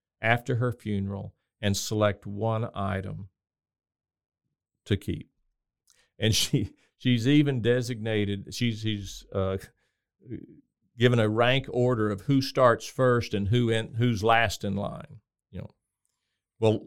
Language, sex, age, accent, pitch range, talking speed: English, male, 50-69, American, 105-130 Hz, 125 wpm